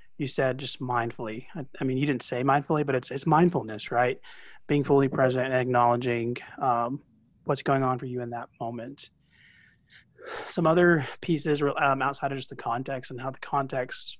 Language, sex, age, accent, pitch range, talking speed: English, male, 30-49, American, 125-145 Hz, 180 wpm